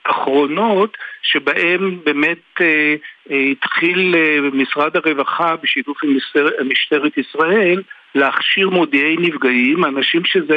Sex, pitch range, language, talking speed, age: male, 135-180 Hz, Hebrew, 110 wpm, 60-79